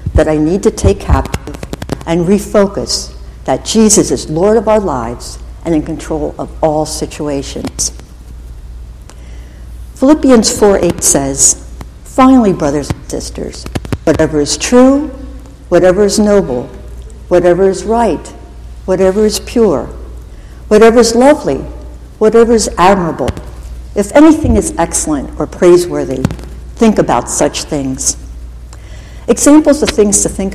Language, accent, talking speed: English, American, 120 wpm